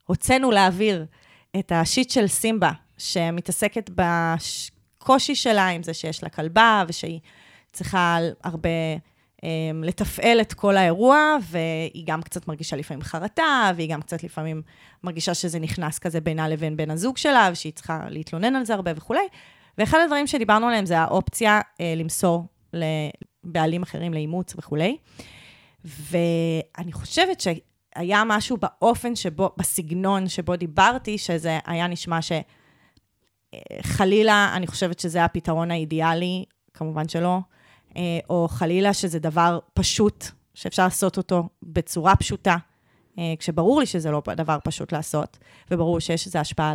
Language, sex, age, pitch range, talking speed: Hebrew, female, 20-39, 160-200 Hz, 130 wpm